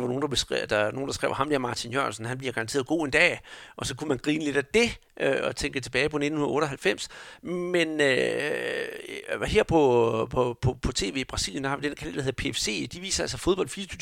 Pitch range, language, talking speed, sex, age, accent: 130-165 Hz, Danish, 225 wpm, male, 60-79, native